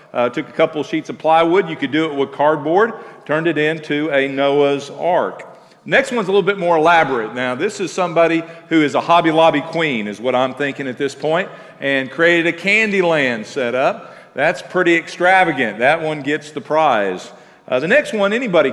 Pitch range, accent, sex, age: 150-185 Hz, American, male, 50-69